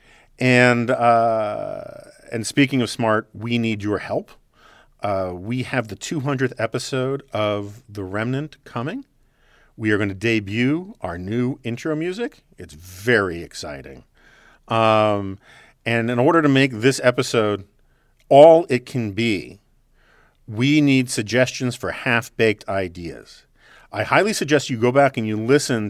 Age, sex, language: 40-59, male, English